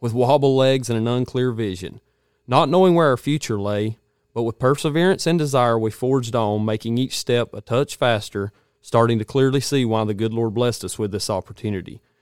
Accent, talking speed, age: American, 195 wpm, 30-49